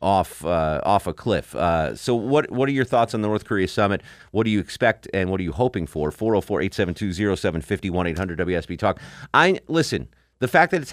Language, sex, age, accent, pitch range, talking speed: English, male, 30-49, American, 90-120 Hz, 205 wpm